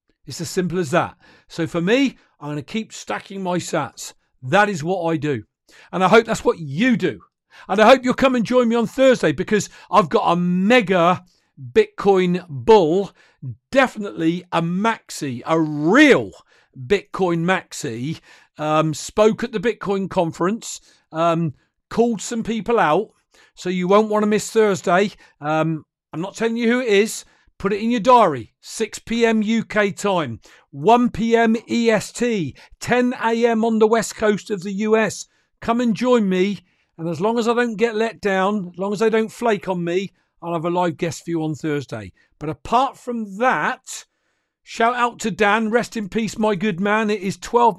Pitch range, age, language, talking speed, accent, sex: 170-225 Hz, 50-69, English, 180 wpm, British, male